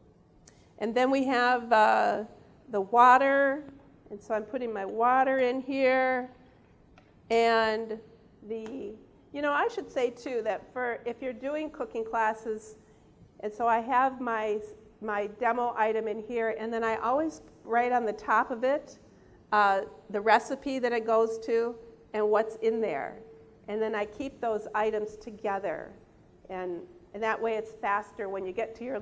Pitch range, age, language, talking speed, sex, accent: 205-240 Hz, 50-69, English, 165 wpm, female, American